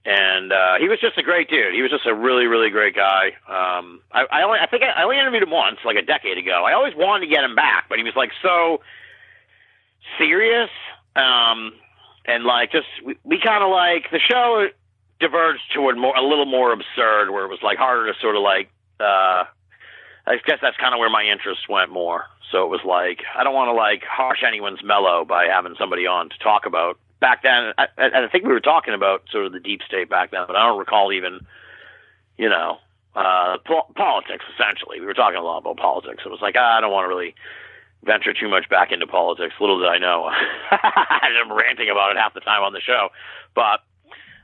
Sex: male